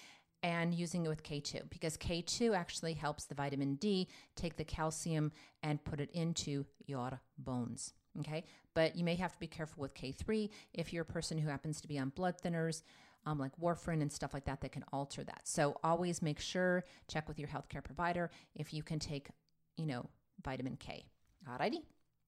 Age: 40-59